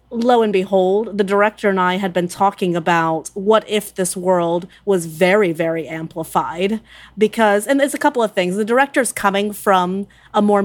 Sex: female